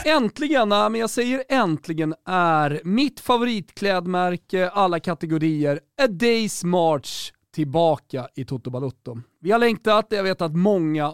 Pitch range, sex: 145-210 Hz, male